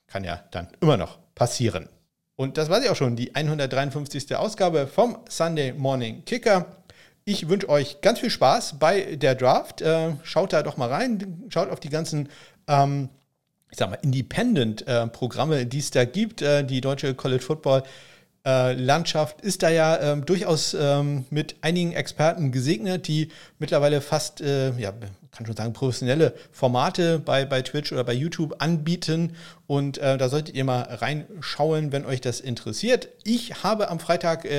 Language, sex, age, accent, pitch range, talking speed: German, male, 50-69, German, 125-165 Hz, 160 wpm